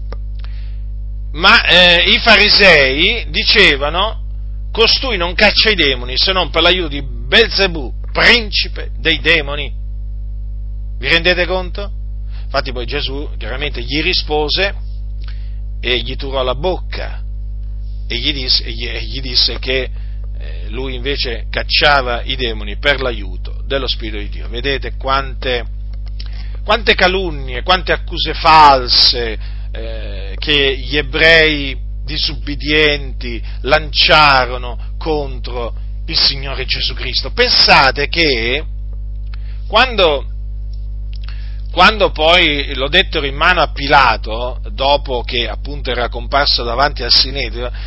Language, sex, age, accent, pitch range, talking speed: Italian, male, 40-59, native, 100-150 Hz, 110 wpm